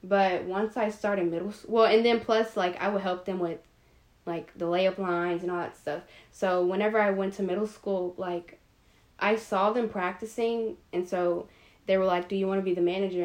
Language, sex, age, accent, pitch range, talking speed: English, female, 10-29, American, 180-205 Hz, 215 wpm